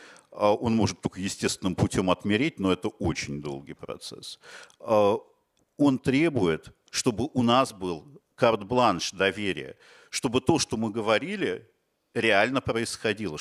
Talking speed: 115 wpm